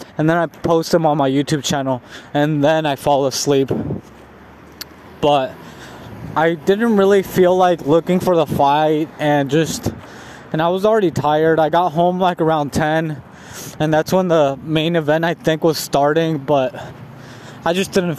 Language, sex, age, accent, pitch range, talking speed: English, male, 20-39, American, 145-185 Hz, 170 wpm